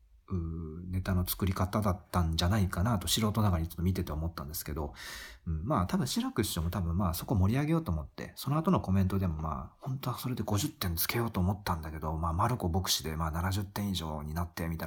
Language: Japanese